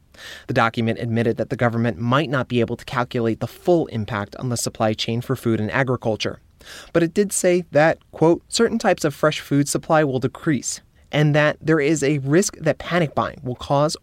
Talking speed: 205 wpm